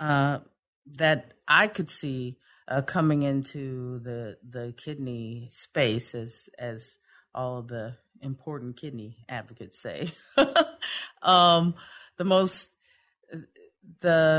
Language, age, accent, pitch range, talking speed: English, 40-59, American, 140-195 Hz, 105 wpm